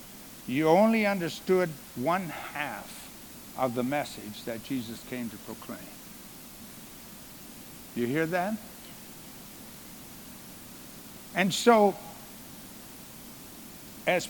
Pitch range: 170-230 Hz